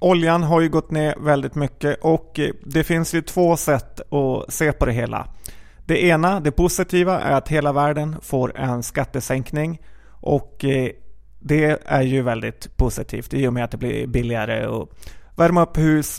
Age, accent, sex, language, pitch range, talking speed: 30-49, native, male, Swedish, 130-155 Hz, 170 wpm